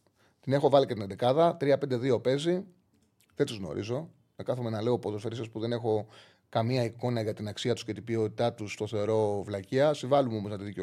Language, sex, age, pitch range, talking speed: Greek, male, 30-49, 115-160 Hz, 210 wpm